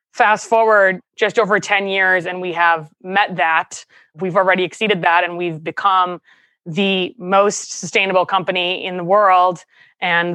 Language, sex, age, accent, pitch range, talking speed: English, female, 20-39, American, 170-200 Hz, 150 wpm